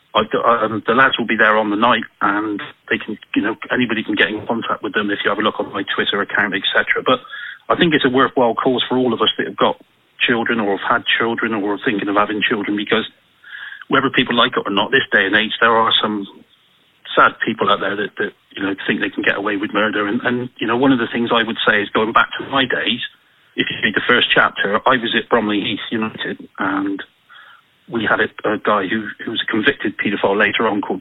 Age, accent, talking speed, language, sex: 40-59, British, 240 wpm, English, male